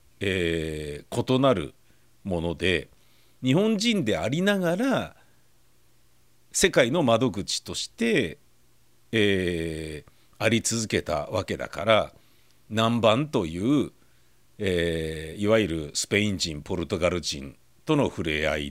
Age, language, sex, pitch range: 50-69, Japanese, male, 85-120 Hz